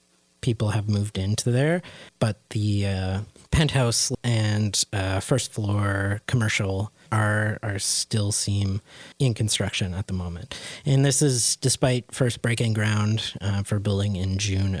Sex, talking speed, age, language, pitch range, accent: male, 140 wpm, 30-49, English, 100-125 Hz, American